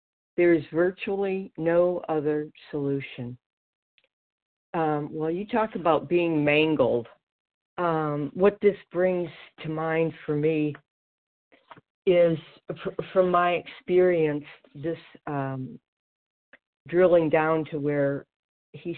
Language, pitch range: English, 145-175 Hz